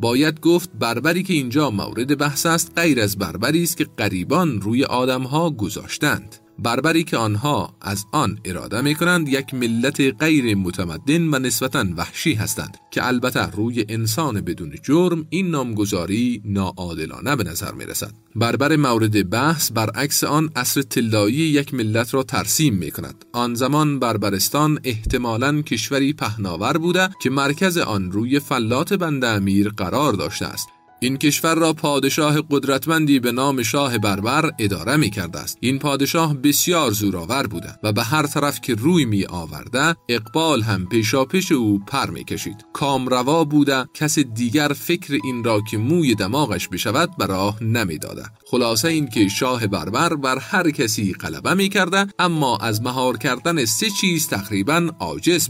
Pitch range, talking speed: 105-150 Hz, 150 wpm